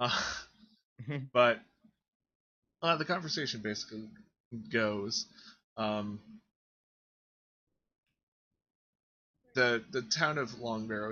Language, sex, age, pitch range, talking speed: English, male, 20-39, 110-125 Hz, 70 wpm